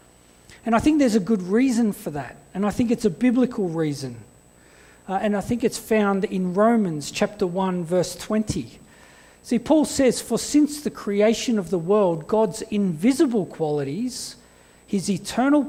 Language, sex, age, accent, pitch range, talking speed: English, male, 40-59, Australian, 170-230 Hz, 165 wpm